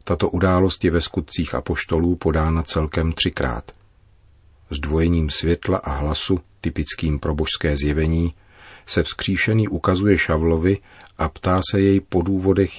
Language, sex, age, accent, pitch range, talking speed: Czech, male, 40-59, native, 80-95 Hz, 120 wpm